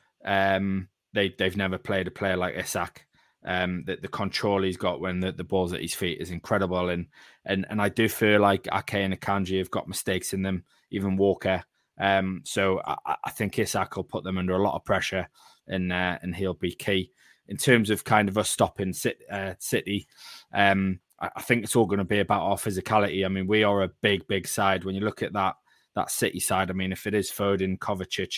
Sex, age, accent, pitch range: male, 20-39, British, 95-105 Hz